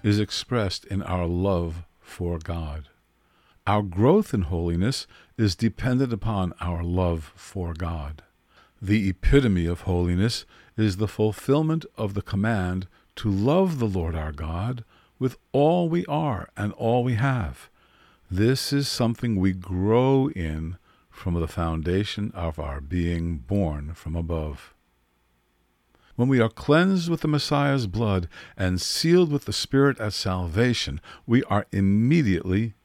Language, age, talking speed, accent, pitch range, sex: English, 50-69, 135 wpm, American, 85-115 Hz, male